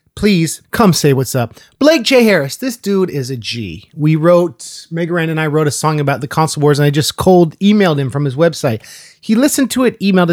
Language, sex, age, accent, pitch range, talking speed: English, male, 30-49, American, 145-190 Hz, 225 wpm